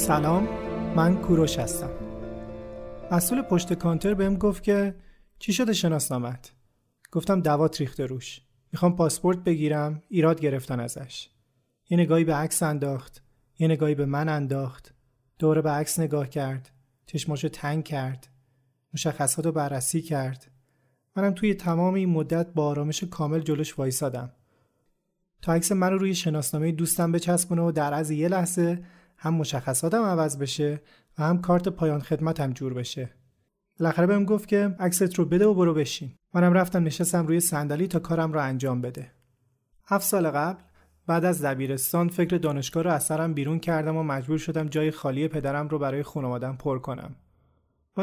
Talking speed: 150 wpm